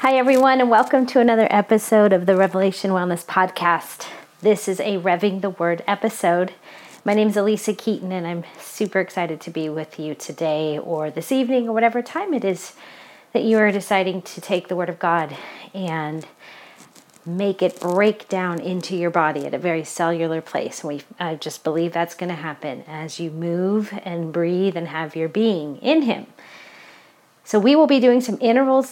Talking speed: 185 wpm